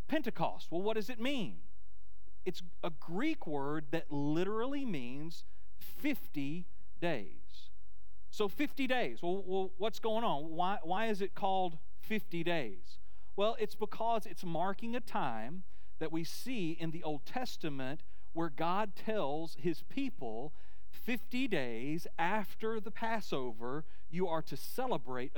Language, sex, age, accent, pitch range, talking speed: English, male, 40-59, American, 130-190 Hz, 135 wpm